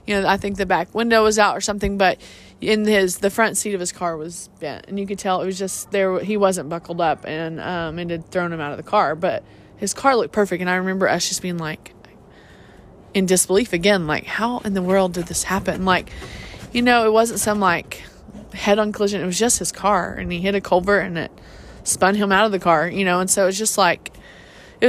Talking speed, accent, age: 250 wpm, American, 20-39